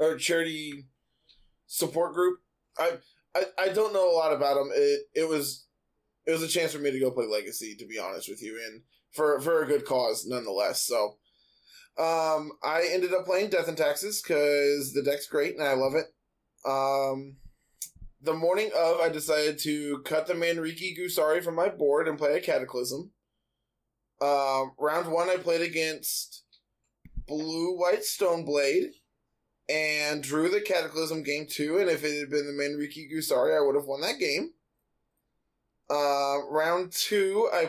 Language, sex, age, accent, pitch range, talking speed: English, male, 20-39, American, 145-185 Hz, 170 wpm